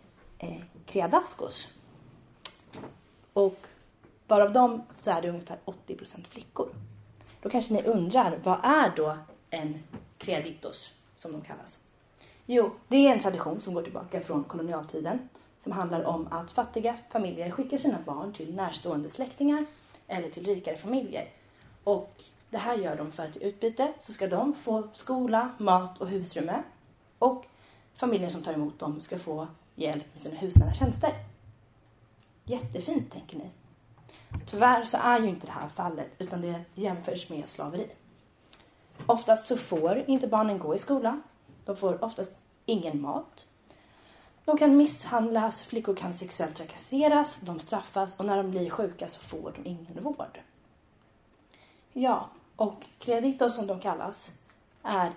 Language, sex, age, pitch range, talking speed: Swedish, female, 30-49, 165-235 Hz, 145 wpm